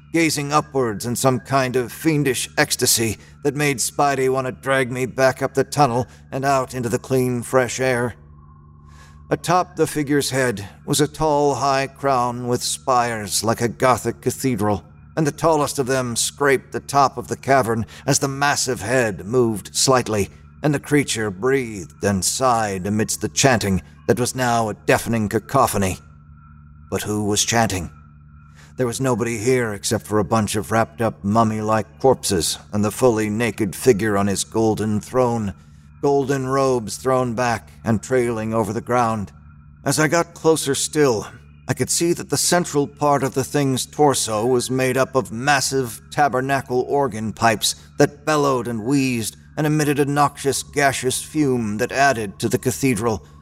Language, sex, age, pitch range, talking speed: English, male, 40-59, 105-135 Hz, 165 wpm